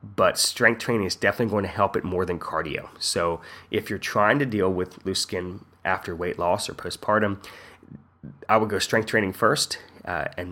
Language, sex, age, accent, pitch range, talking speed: English, male, 20-39, American, 90-110 Hz, 195 wpm